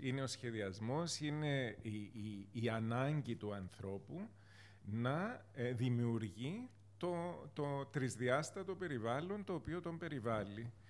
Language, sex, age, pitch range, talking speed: Greek, male, 40-59, 105-145 Hz, 110 wpm